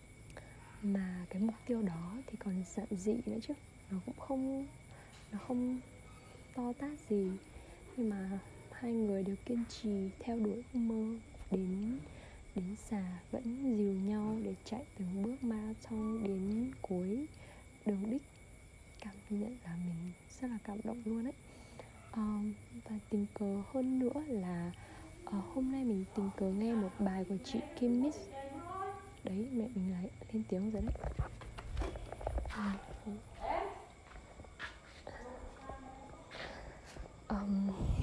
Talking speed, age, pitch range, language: 135 wpm, 20-39, 195-235 Hz, Vietnamese